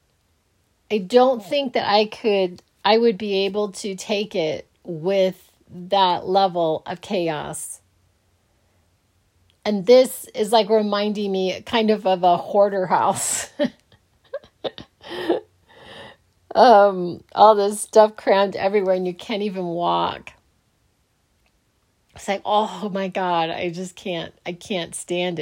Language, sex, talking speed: English, female, 125 wpm